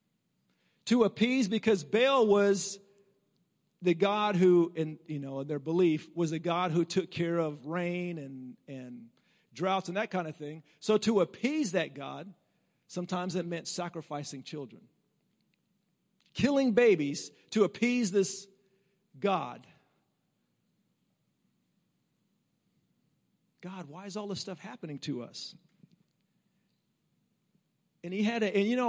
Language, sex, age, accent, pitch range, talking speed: English, male, 40-59, American, 170-210 Hz, 125 wpm